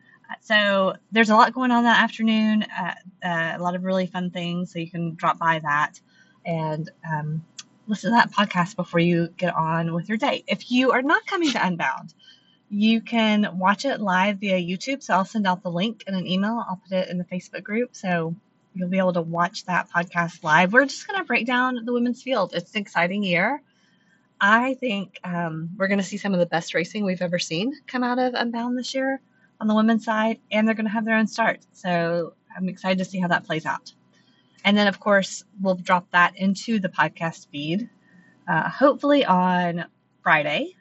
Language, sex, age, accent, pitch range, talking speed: English, female, 20-39, American, 175-230 Hz, 210 wpm